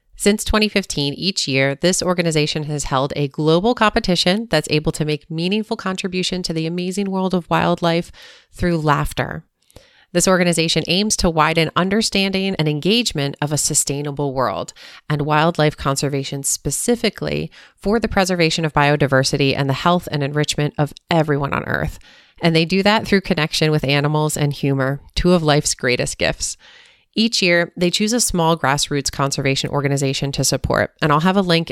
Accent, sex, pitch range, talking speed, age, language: American, female, 145-180 Hz, 165 wpm, 30-49, English